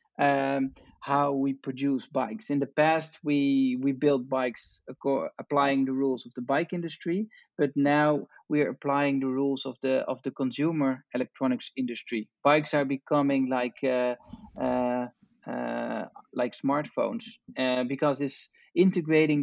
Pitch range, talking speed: 130-155 Hz, 140 wpm